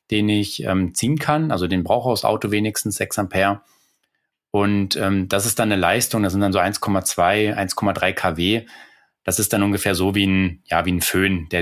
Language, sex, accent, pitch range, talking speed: German, male, German, 90-105 Hz, 205 wpm